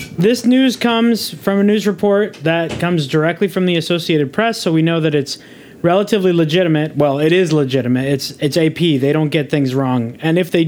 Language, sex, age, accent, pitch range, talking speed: English, male, 20-39, American, 145-185 Hz, 200 wpm